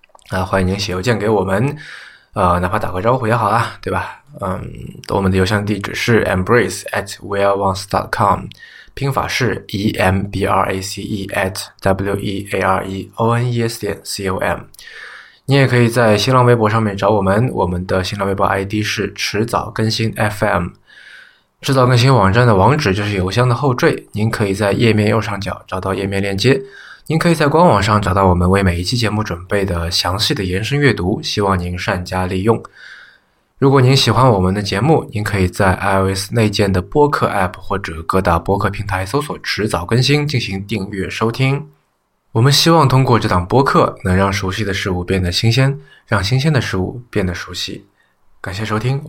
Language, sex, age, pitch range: Chinese, male, 20-39, 95-120 Hz